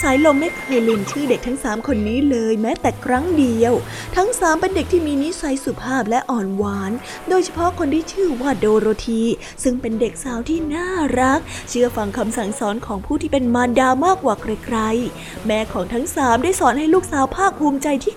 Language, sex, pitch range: Thai, female, 235-295 Hz